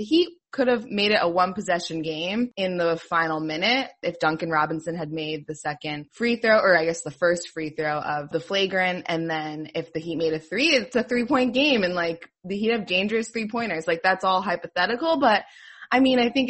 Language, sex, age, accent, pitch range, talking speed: English, female, 20-39, American, 160-205 Hz, 220 wpm